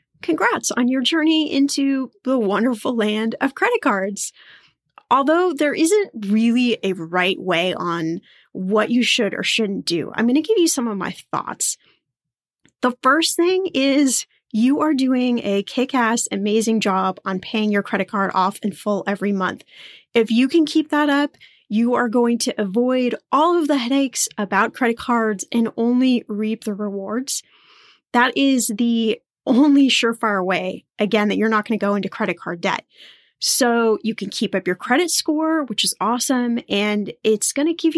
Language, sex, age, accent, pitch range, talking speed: English, female, 10-29, American, 210-265 Hz, 175 wpm